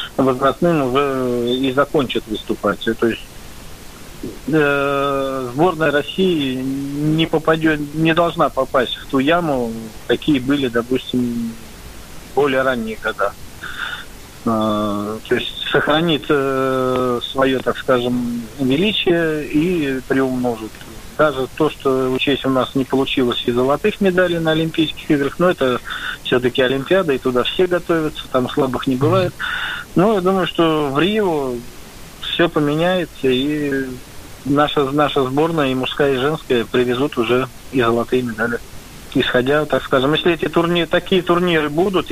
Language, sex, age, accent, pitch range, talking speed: Russian, male, 40-59, native, 130-160 Hz, 130 wpm